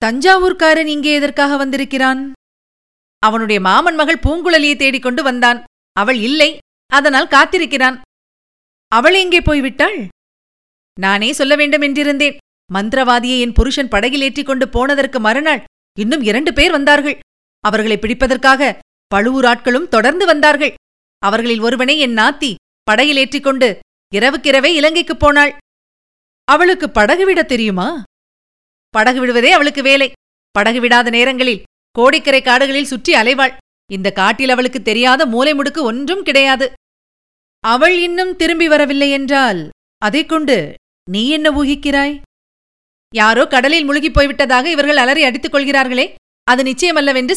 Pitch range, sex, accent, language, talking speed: 245-300 Hz, female, native, Tamil, 110 wpm